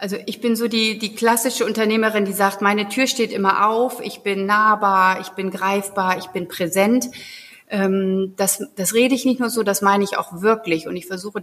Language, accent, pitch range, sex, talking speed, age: German, German, 175-230 Hz, female, 210 wpm, 30-49